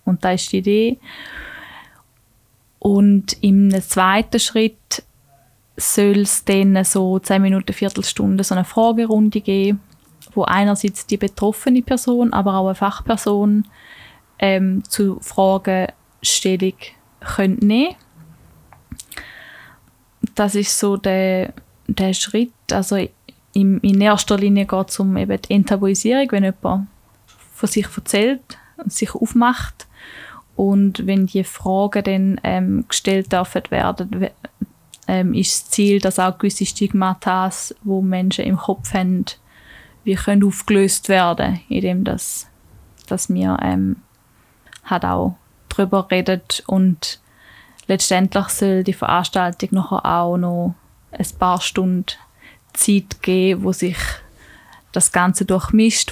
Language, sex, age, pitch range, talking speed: German, female, 10-29, 185-205 Hz, 120 wpm